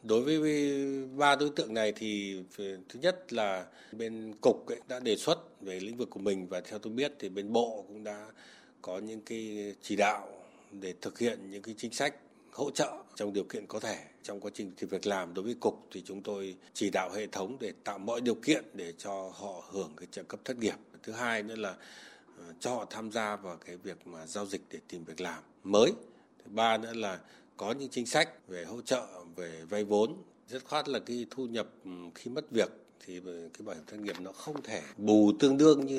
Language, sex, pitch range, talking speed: Vietnamese, male, 95-120 Hz, 220 wpm